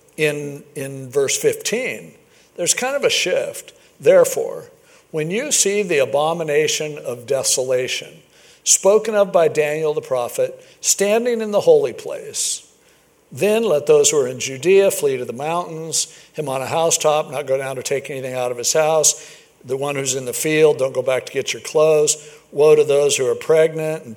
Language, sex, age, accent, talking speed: English, male, 60-79, American, 180 wpm